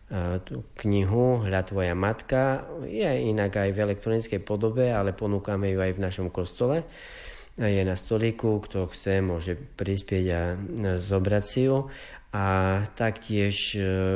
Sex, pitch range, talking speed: male, 95-110 Hz, 130 wpm